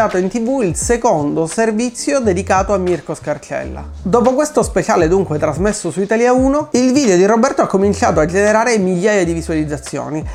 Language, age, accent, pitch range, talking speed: Italian, 30-49, native, 170-225 Hz, 160 wpm